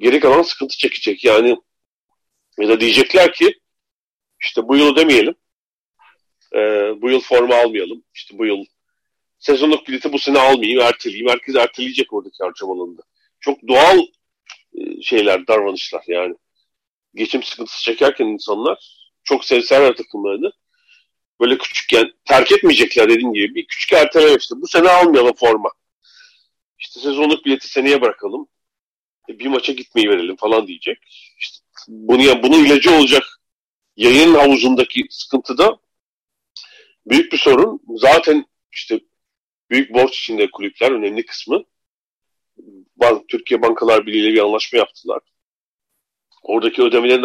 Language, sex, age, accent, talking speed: Turkish, male, 40-59, native, 125 wpm